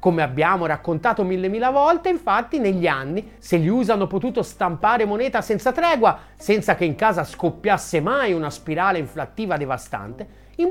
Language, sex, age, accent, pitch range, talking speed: Italian, male, 30-49, native, 175-260 Hz, 155 wpm